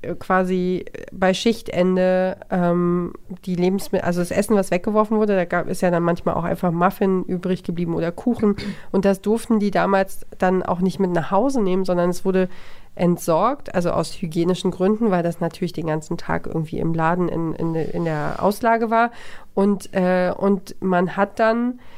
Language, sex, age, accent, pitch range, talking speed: German, female, 40-59, German, 180-200 Hz, 180 wpm